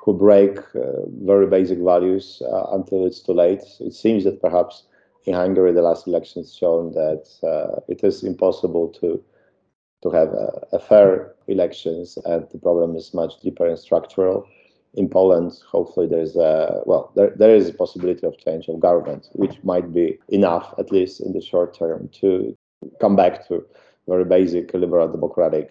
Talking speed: 175 wpm